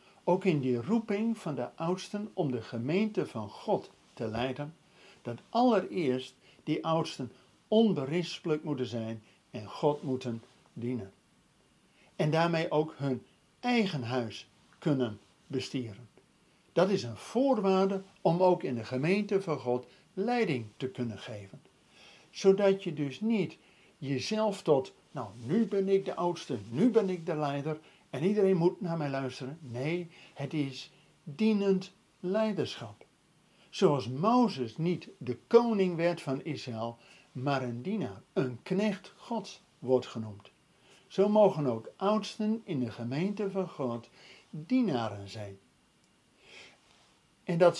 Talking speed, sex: 130 wpm, male